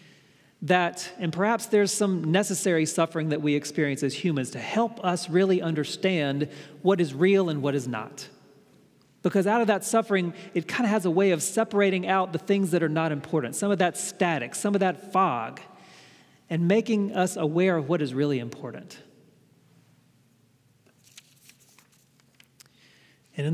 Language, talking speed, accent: English, 160 wpm, American